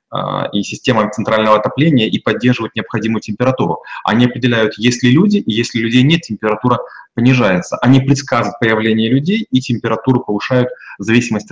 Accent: native